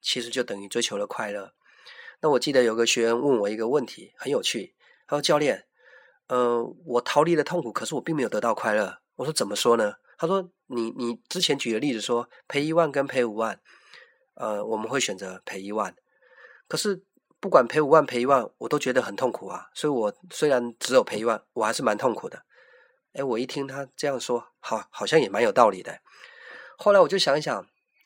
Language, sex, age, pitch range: Chinese, male, 30-49, 120-180 Hz